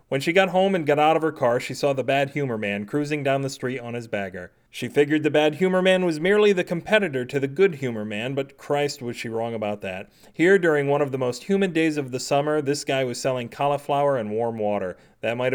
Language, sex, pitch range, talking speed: English, male, 120-155 Hz, 255 wpm